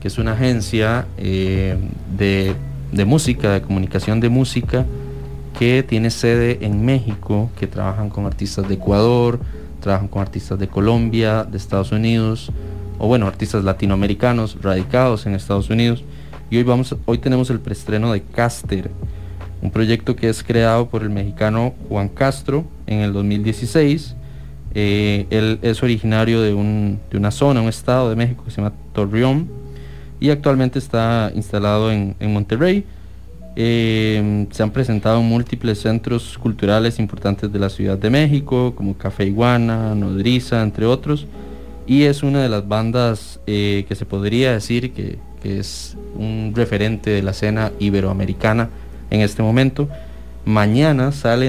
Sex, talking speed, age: male, 150 wpm, 30-49